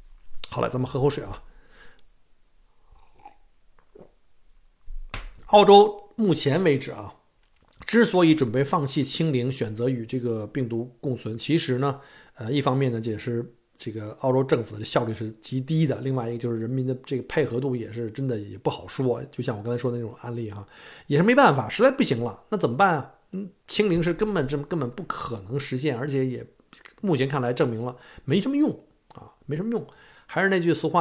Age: 50-69